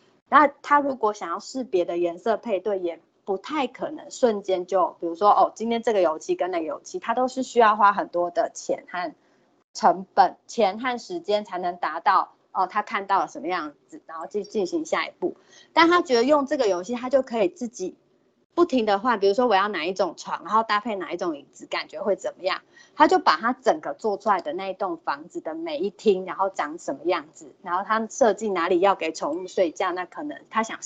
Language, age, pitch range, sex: Chinese, 30-49, 195-305 Hz, female